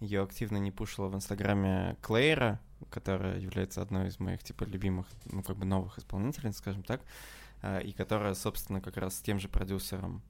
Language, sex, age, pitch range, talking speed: Russian, male, 20-39, 95-110 Hz, 175 wpm